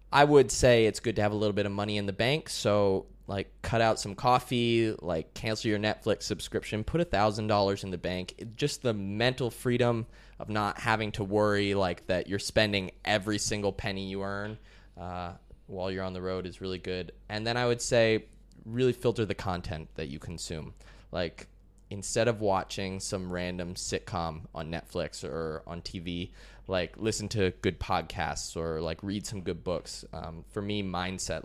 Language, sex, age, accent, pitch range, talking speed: English, male, 20-39, American, 90-110 Hz, 190 wpm